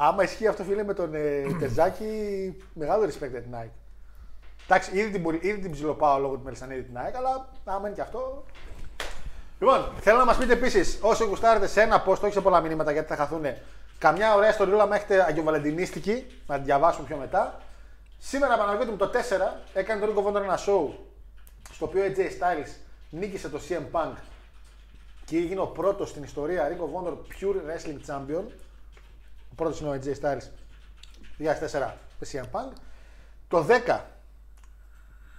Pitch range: 125-200 Hz